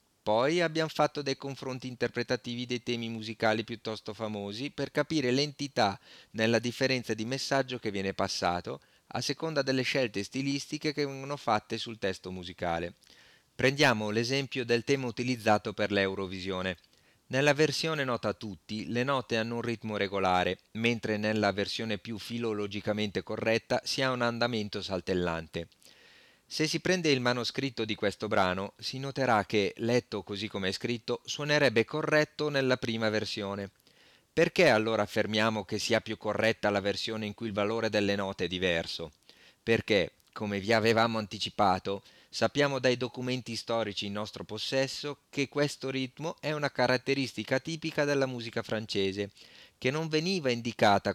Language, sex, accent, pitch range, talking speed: Italian, male, native, 105-135 Hz, 145 wpm